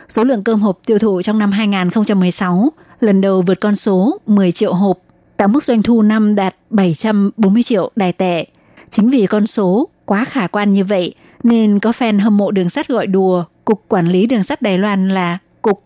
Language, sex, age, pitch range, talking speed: Vietnamese, female, 20-39, 190-225 Hz, 205 wpm